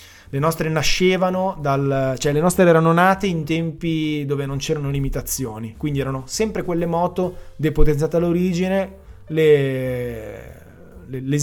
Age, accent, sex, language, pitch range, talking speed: 20-39, native, male, Italian, 130-165 Hz, 120 wpm